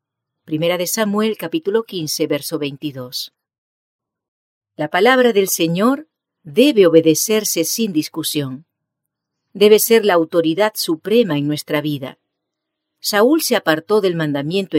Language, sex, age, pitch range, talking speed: English, female, 50-69, 150-210 Hz, 100 wpm